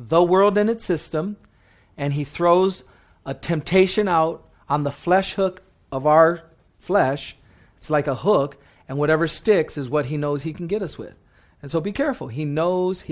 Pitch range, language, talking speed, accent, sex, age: 150-215 Hz, English, 190 wpm, American, male, 40-59